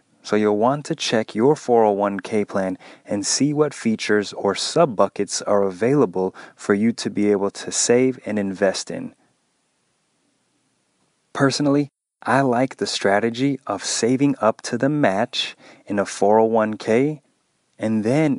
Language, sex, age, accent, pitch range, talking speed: English, male, 30-49, American, 100-135 Hz, 140 wpm